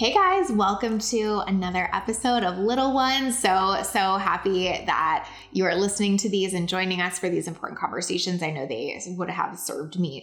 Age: 20-39